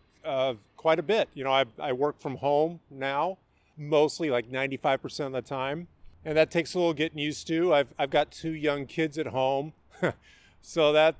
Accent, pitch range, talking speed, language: American, 130-155 Hz, 200 wpm, English